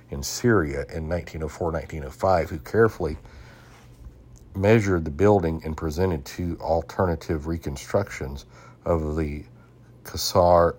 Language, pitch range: English, 75-100 Hz